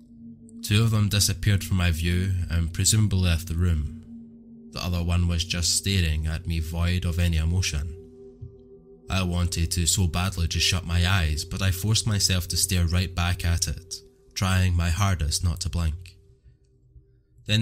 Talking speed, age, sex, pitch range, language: 170 wpm, 20-39, male, 85-105 Hz, English